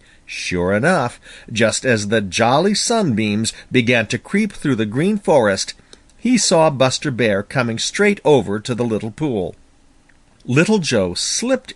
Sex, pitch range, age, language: male, 105-165 Hz, 50-69, Japanese